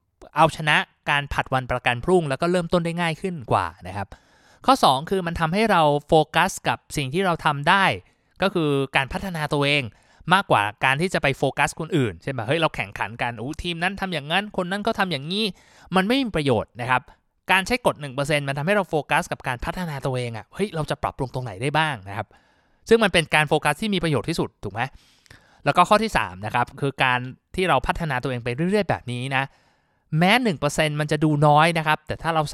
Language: Thai